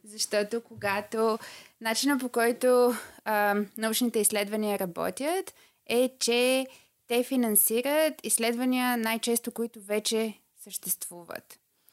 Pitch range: 205-245 Hz